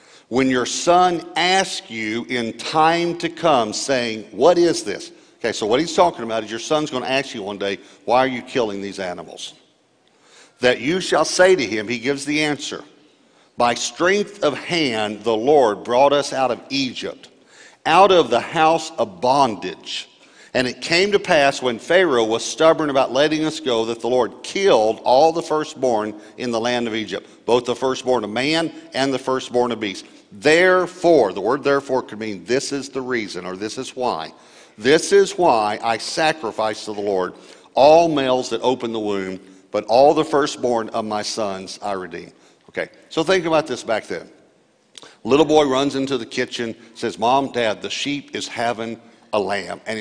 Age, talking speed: 50-69, 185 wpm